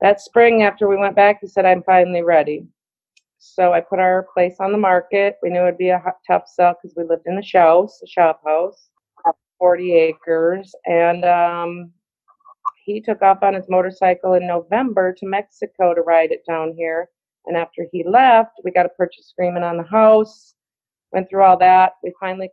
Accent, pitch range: American, 170-195 Hz